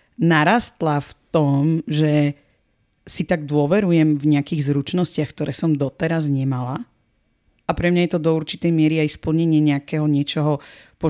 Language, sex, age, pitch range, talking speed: Slovak, female, 40-59, 145-175 Hz, 145 wpm